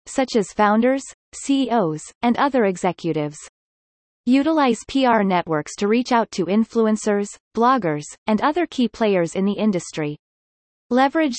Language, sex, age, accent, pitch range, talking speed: English, female, 30-49, American, 180-250 Hz, 125 wpm